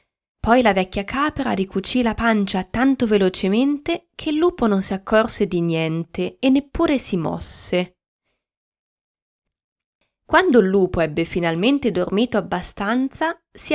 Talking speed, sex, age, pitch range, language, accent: 125 wpm, female, 20-39, 180-240 Hz, Italian, native